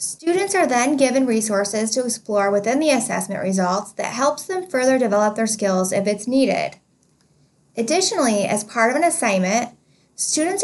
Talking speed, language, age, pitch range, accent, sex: 160 wpm, English, 10-29, 210-275 Hz, American, female